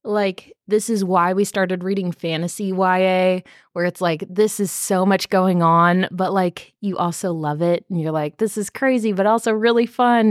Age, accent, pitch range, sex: 20-39, American, 170-220 Hz, female